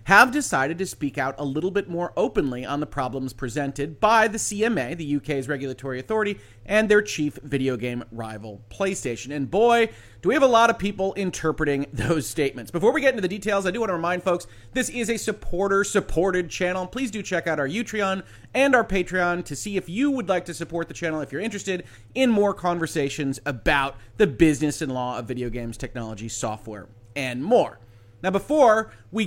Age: 30-49